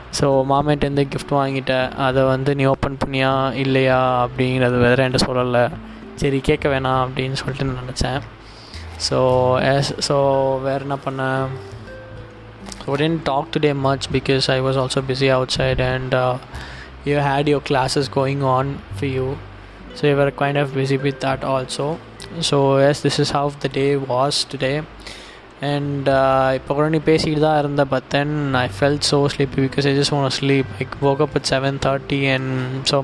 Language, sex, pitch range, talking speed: Tamil, male, 130-140 Hz, 155 wpm